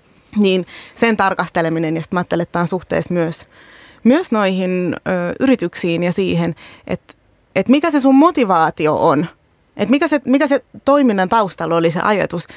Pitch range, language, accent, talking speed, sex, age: 170-215 Hz, Finnish, native, 160 wpm, female, 30-49